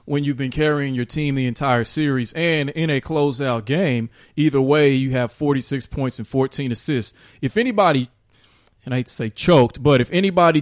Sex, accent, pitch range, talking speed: male, American, 125-155 Hz, 190 wpm